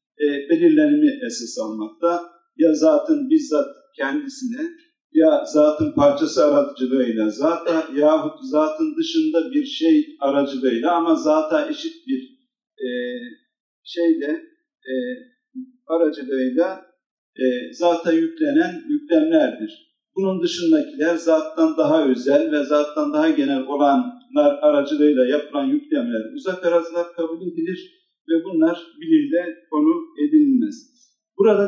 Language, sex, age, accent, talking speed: Turkish, male, 50-69, native, 100 wpm